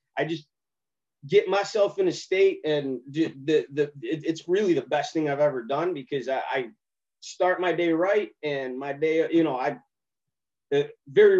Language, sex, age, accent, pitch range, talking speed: English, male, 30-49, American, 110-155 Hz, 180 wpm